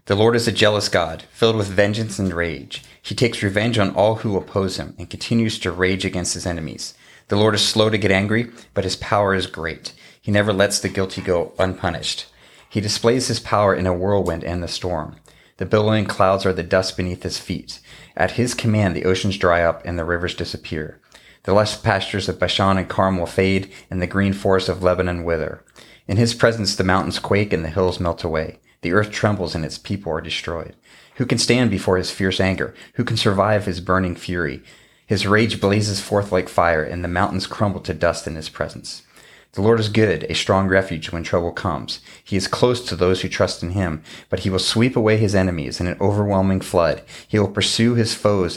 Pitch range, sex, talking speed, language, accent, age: 90-105 Hz, male, 215 wpm, English, American, 40-59